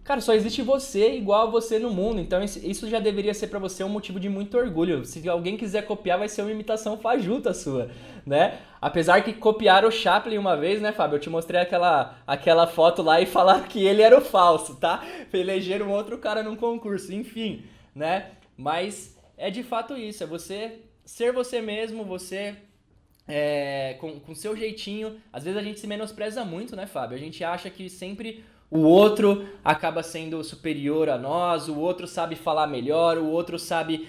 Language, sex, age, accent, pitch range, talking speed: Portuguese, male, 20-39, Brazilian, 165-220 Hz, 190 wpm